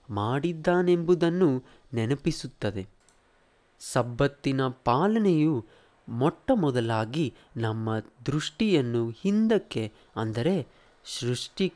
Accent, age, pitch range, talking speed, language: native, 20-39, 115-165 Hz, 50 wpm, Kannada